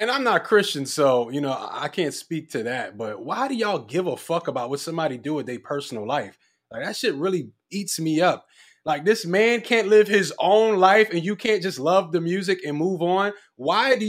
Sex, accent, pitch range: male, American, 165-215 Hz